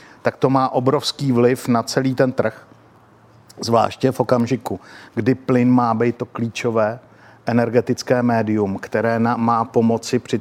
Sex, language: male, Czech